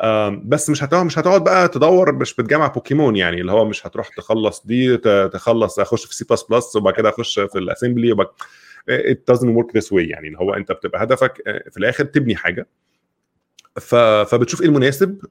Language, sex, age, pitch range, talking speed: Arabic, male, 20-39, 110-155 Hz, 180 wpm